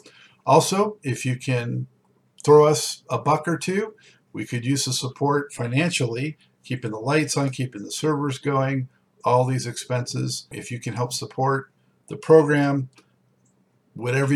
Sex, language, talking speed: male, English, 145 wpm